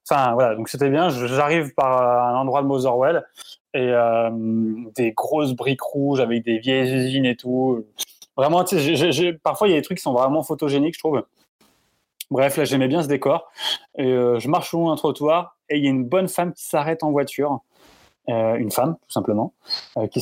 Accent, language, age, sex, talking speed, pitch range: French, French, 20-39, male, 205 wpm, 140-185 Hz